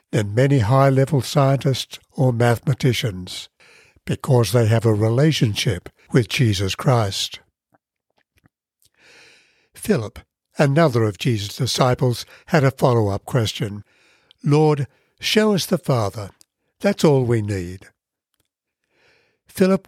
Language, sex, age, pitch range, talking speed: English, male, 60-79, 115-150 Hz, 100 wpm